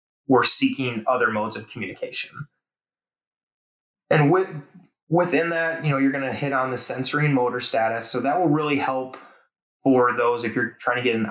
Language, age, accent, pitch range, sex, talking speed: English, 20-39, American, 110-140 Hz, male, 185 wpm